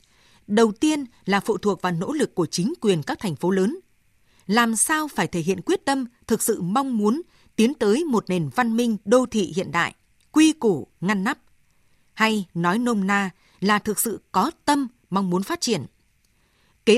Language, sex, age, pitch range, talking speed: Vietnamese, female, 20-39, 180-235 Hz, 190 wpm